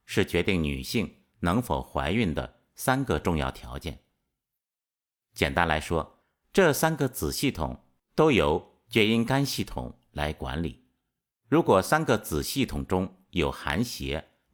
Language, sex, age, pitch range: Chinese, male, 50-69, 75-120 Hz